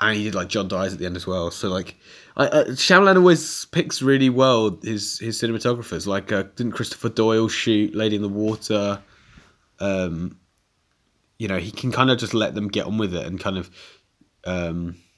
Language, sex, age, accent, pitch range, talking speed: English, male, 20-39, British, 95-125 Hz, 200 wpm